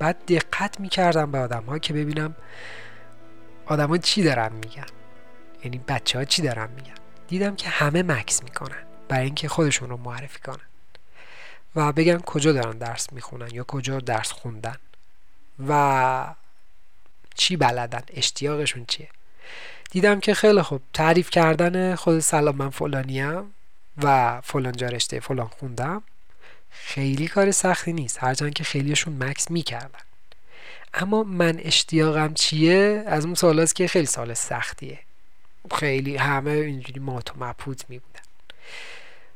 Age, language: 30-49, Persian